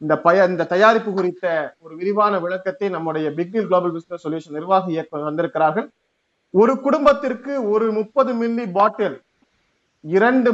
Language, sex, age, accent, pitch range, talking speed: Tamil, male, 30-49, native, 175-225 Hz, 130 wpm